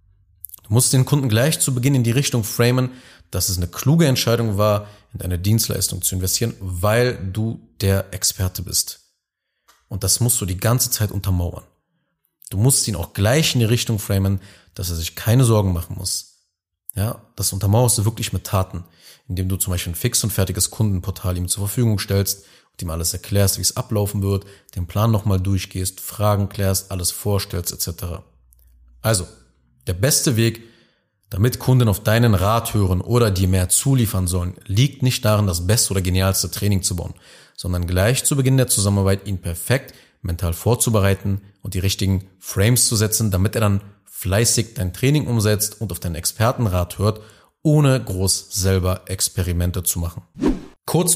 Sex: male